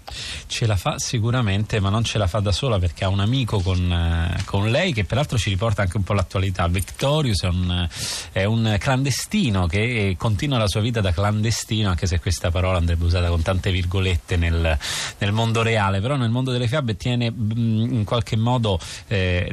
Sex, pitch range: male, 90-115 Hz